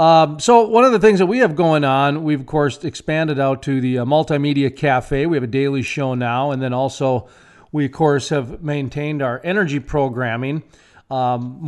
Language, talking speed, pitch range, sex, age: English, 200 wpm, 125-155 Hz, male, 40-59